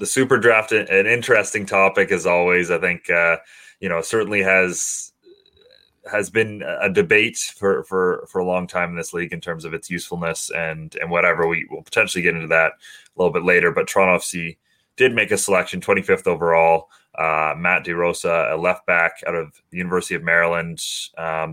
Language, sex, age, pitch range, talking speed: English, male, 20-39, 85-100 Hz, 190 wpm